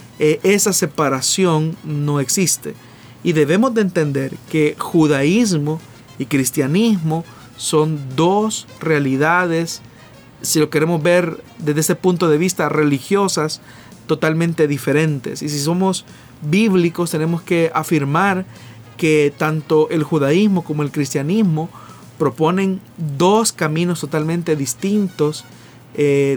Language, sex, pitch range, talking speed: Spanish, male, 140-175 Hz, 110 wpm